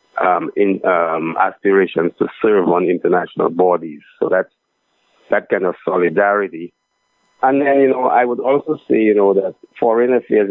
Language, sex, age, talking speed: English, male, 50-69, 160 wpm